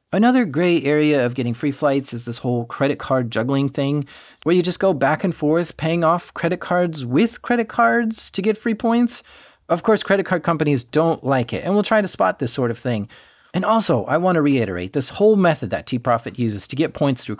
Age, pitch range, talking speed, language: 30-49, 125-180 Hz, 220 wpm, English